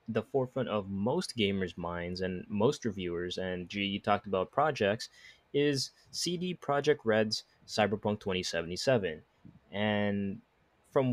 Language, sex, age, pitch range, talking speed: English, male, 20-39, 100-120 Hz, 125 wpm